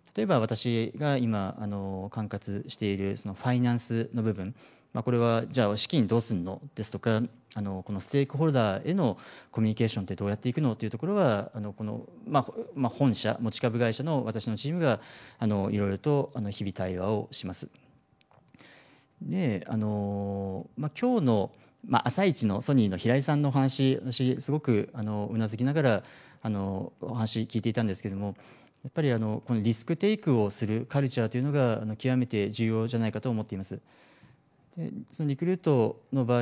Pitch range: 105-130 Hz